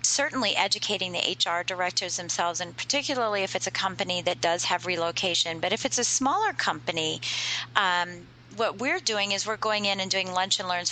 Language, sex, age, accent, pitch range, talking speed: English, female, 40-59, American, 185-235 Hz, 190 wpm